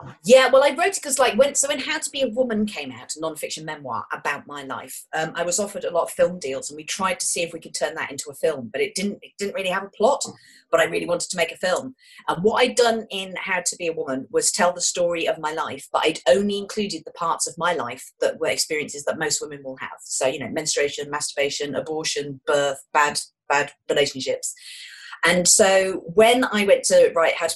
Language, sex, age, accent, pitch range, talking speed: English, female, 30-49, British, 155-260 Hz, 250 wpm